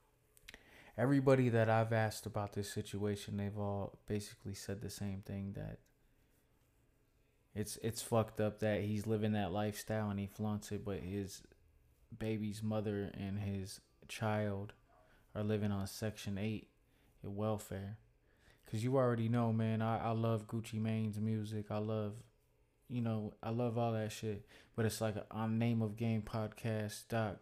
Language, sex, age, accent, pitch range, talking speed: English, male, 20-39, American, 105-115 Hz, 150 wpm